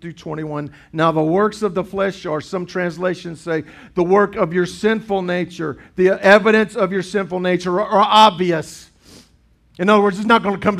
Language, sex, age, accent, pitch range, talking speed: English, male, 50-69, American, 160-195 Hz, 185 wpm